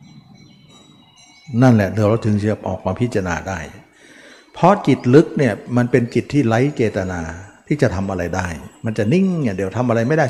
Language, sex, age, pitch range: Thai, male, 60-79, 100-130 Hz